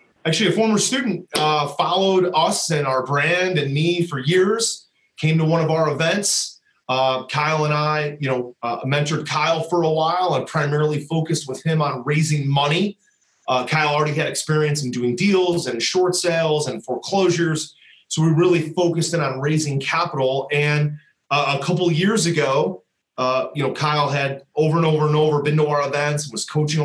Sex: male